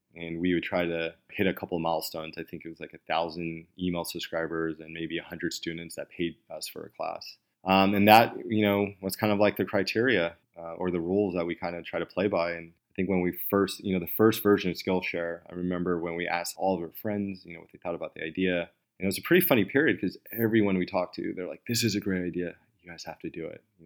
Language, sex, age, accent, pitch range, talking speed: English, male, 20-39, American, 85-95 Hz, 275 wpm